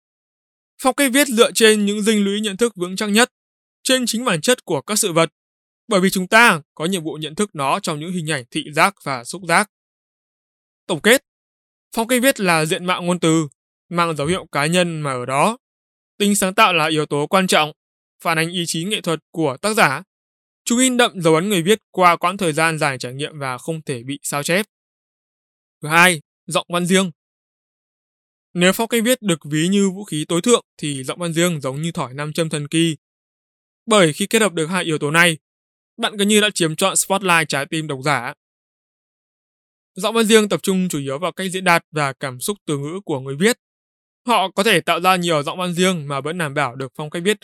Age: 20-39